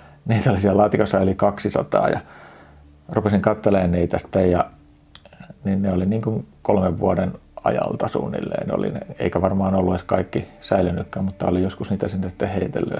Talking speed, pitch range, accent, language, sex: 155 wpm, 85-100 Hz, native, Finnish, male